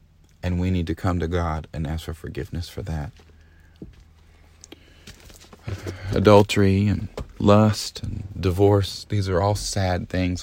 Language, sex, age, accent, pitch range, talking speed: English, male, 40-59, American, 80-100 Hz, 130 wpm